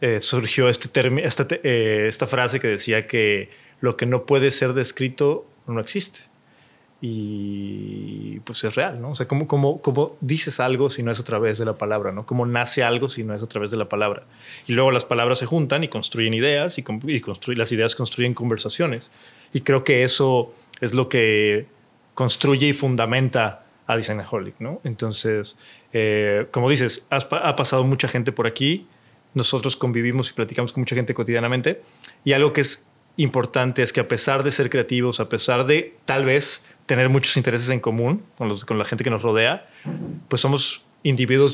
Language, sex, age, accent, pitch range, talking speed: Spanish, male, 30-49, Mexican, 115-140 Hz, 190 wpm